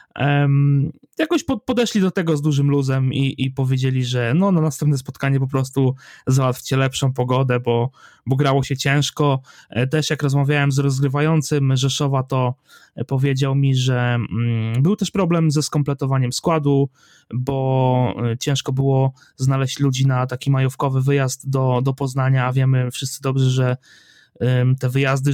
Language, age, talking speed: Polish, 20-39, 140 wpm